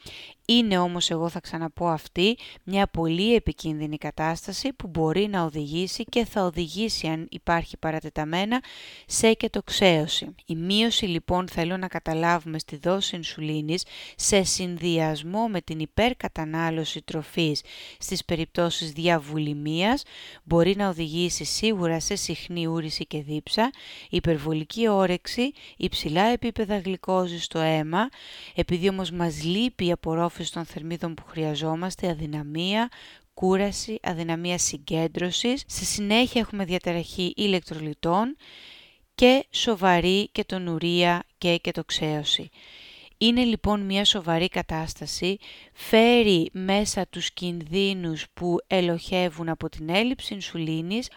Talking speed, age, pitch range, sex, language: 110 wpm, 30-49, 165-200 Hz, female, Greek